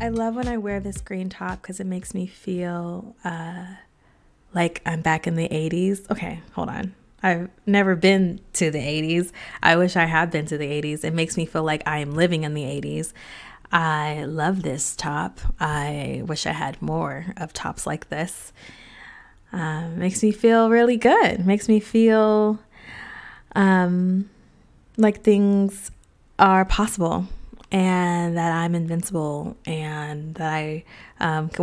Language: English